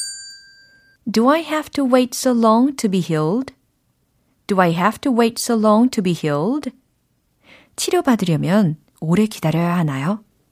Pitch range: 155-255 Hz